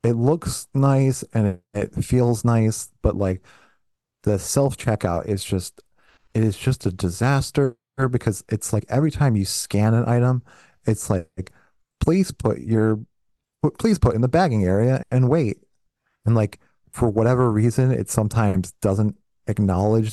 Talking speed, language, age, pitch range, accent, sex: 150 wpm, English, 30-49, 105-130 Hz, American, male